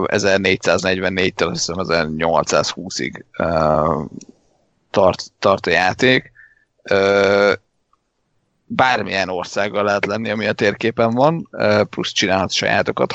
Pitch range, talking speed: 95-110 Hz, 95 wpm